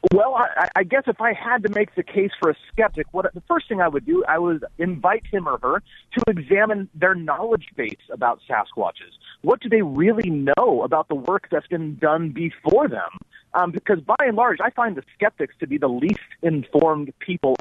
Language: English